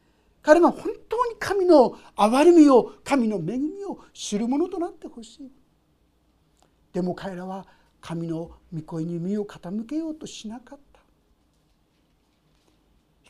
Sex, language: male, Japanese